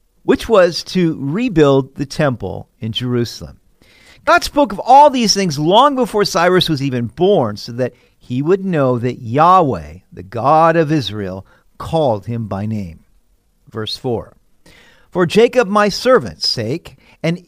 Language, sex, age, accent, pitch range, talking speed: English, male, 50-69, American, 125-180 Hz, 150 wpm